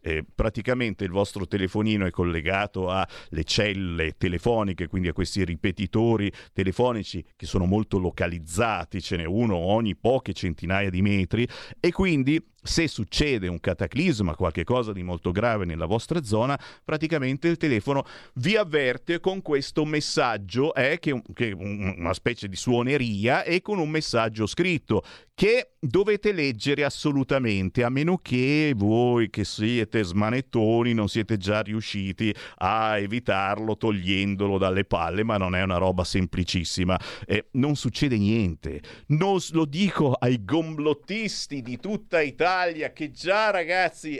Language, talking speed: Italian, 135 wpm